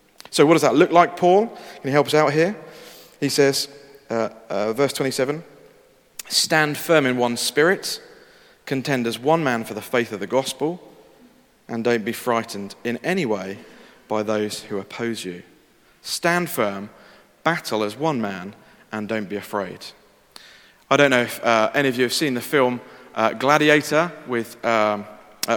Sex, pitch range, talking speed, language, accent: male, 115-150 Hz, 170 wpm, English, British